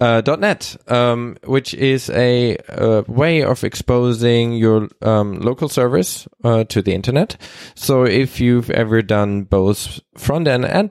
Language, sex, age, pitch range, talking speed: English, male, 20-39, 105-130 Hz, 155 wpm